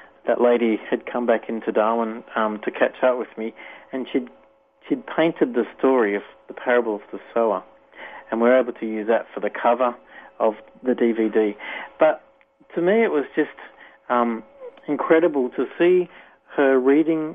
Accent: Australian